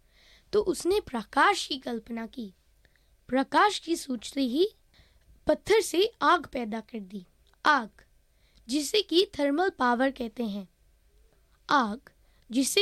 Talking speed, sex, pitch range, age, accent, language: 105 wpm, female, 250-360 Hz, 20-39, native, Hindi